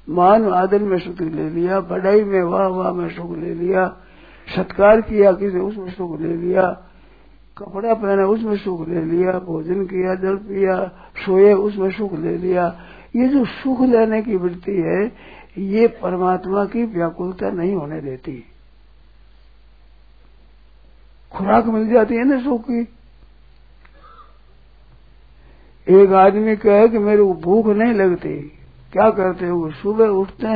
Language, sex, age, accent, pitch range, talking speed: Hindi, male, 60-79, native, 170-205 Hz, 140 wpm